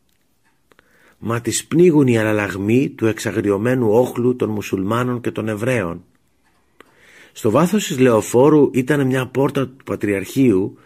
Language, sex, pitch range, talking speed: Greek, male, 100-130 Hz, 120 wpm